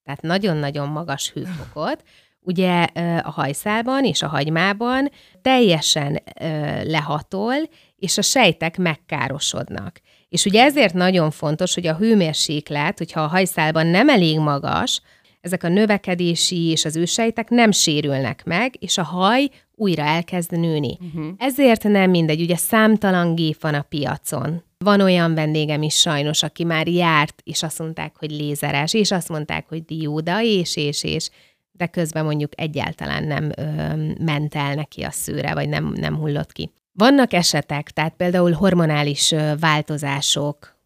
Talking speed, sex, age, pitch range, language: 140 wpm, female, 30-49, 150-180 Hz, Hungarian